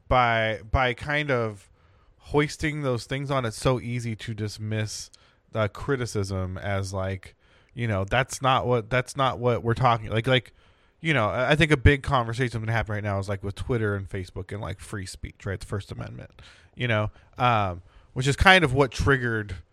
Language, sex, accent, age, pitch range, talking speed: English, male, American, 20-39, 100-130 Hz, 195 wpm